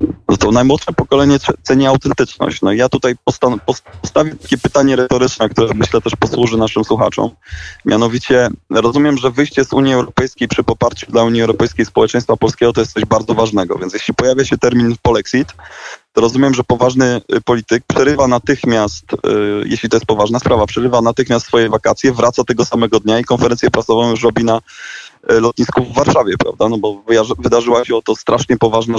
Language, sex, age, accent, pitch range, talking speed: Polish, male, 20-39, native, 110-125 Hz, 175 wpm